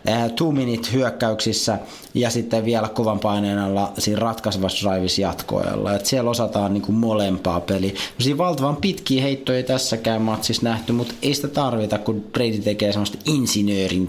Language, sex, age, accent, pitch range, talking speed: Finnish, male, 30-49, native, 100-120 Hz, 140 wpm